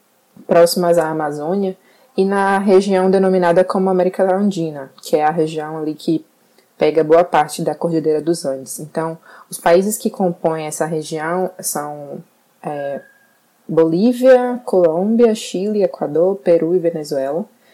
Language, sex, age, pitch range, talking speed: Portuguese, female, 20-39, 155-190 Hz, 130 wpm